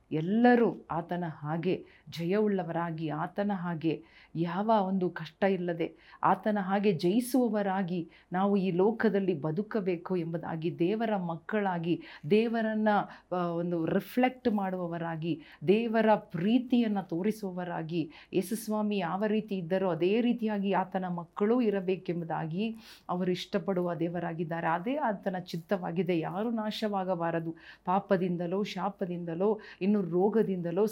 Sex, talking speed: female, 90 wpm